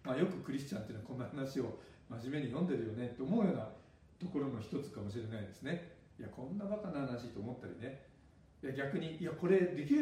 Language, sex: Japanese, male